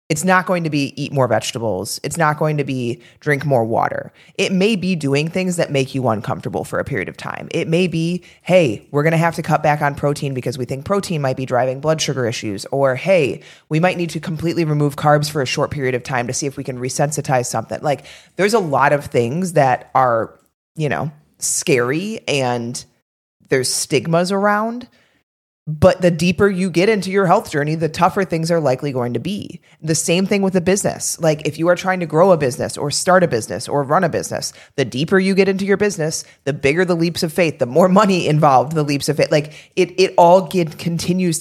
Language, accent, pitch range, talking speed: English, American, 140-180 Hz, 230 wpm